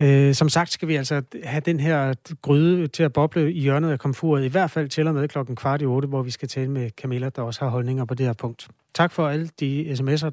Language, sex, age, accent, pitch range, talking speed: Danish, male, 30-49, native, 125-155 Hz, 265 wpm